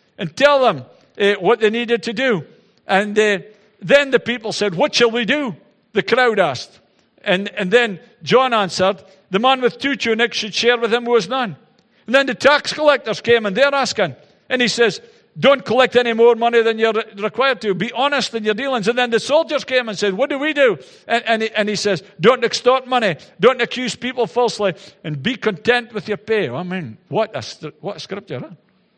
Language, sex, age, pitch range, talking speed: English, male, 50-69, 180-240 Hz, 210 wpm